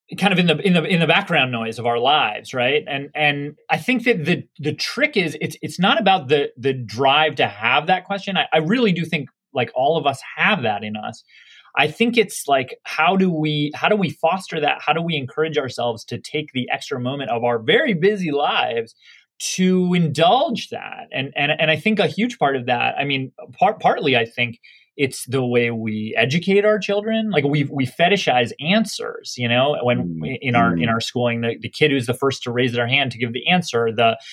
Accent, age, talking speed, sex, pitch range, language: American, 30-49, 225 wpm, male, 120-170 Hz, English